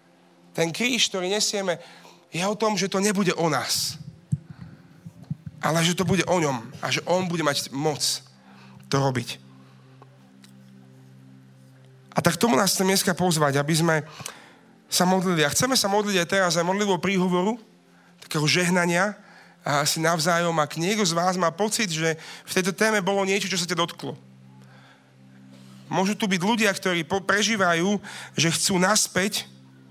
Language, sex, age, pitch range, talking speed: Slovak, male, 40-59, 135-180 Hz, 155 wpm